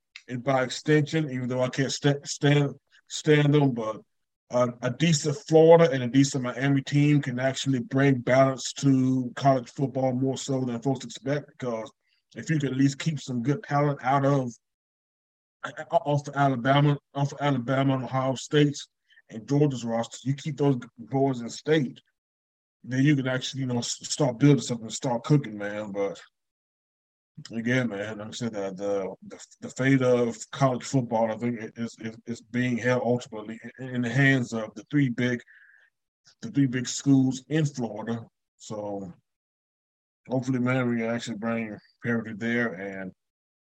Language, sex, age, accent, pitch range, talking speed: English, male, 20-39, American, 115-140 Hz, 155 wpm